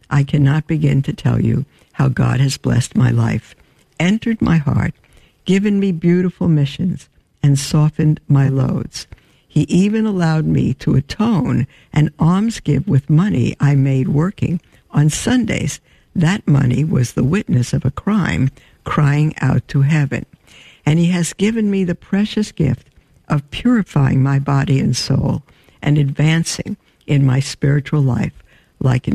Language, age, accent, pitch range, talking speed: English, 60-79, American, 135-160 Hz, 150 wpm